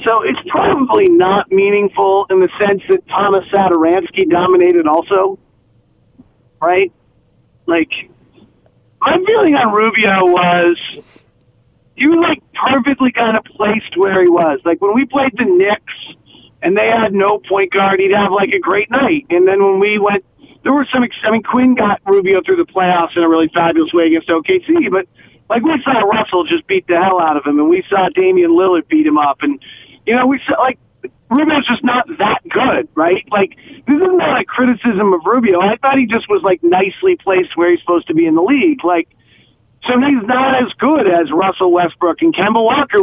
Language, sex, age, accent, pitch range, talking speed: English, male, 40-59, American, 180-275 Hz, 190 wpm